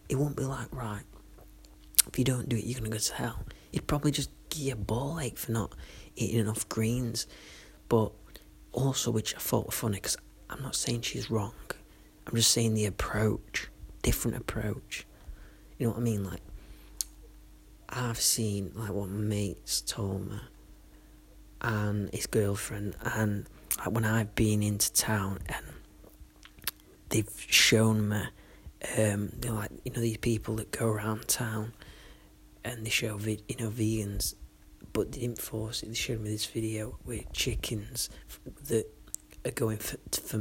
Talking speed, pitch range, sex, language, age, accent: 170 wpm, 105-115 Hz, male, English, 30-49, British